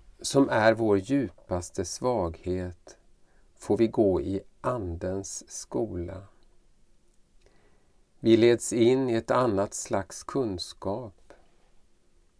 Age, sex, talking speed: 50-69, male, 90 wpm